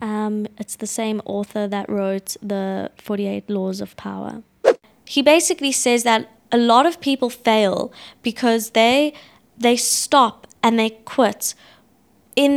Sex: female